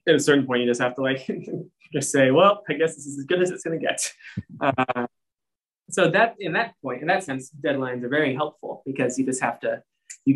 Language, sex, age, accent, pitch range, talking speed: English, male, 20-39, American, 120-140 Hz, 245 wpm